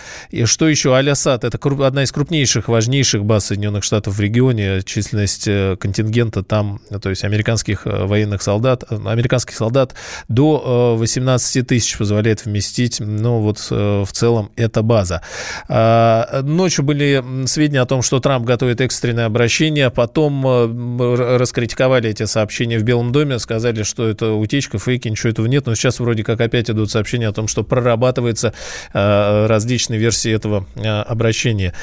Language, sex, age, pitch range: Russian, male, 20-39, 110-130 Hz